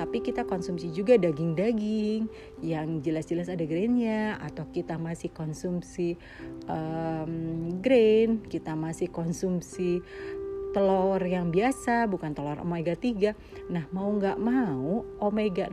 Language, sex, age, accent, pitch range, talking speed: Indonesian, female, 40-59, native, 165-220 Hz, 115 wpm